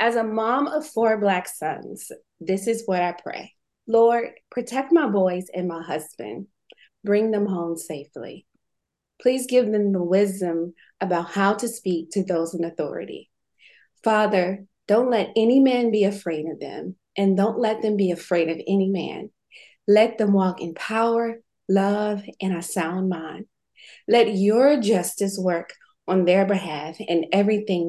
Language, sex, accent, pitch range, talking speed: English, female, American, 180-225 Hz, 155 wpm